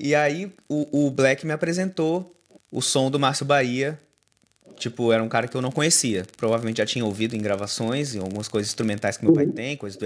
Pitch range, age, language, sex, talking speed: 110-145 Hz, 20-39, Portuguese, male, 215 wpm